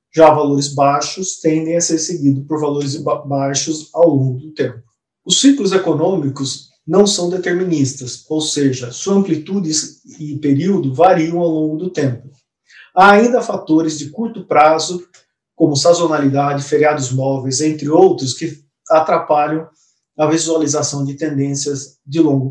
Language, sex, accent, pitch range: Portuguese, male, Brazilian, 140-175 Hz